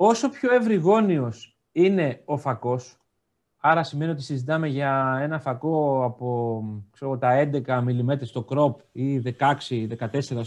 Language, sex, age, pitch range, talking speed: Greek, male, 30-49, 130-180 Hz, 130 wpm